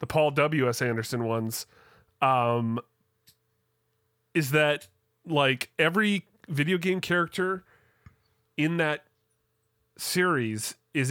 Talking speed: 90 wpm